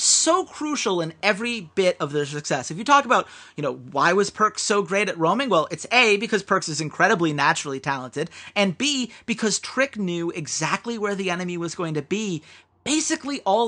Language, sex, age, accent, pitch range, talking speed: English, male, 30-49, American, 165-245 Hz, 195 wpm